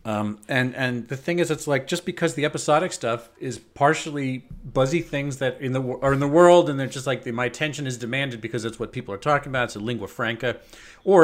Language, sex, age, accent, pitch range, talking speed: English, male, 40-59, American, 115-150 Hz, 240 wpm